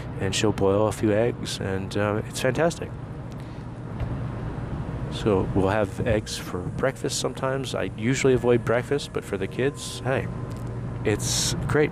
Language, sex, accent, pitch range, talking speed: English, male, American, 105-125 Hz, 140 wpm